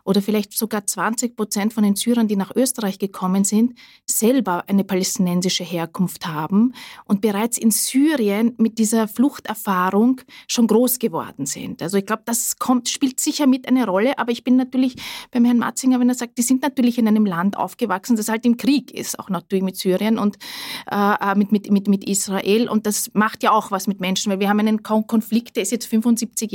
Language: German